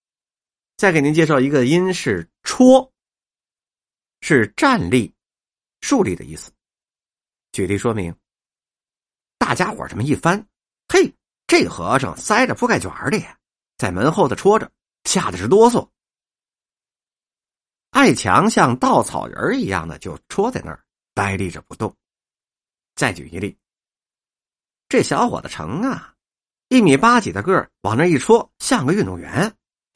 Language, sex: Chinese, male